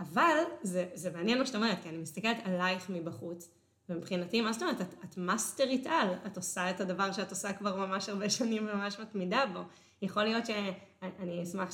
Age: 20-39